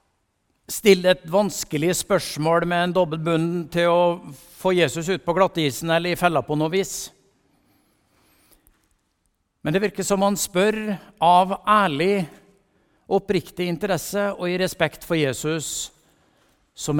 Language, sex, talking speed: English, male, 125 wpm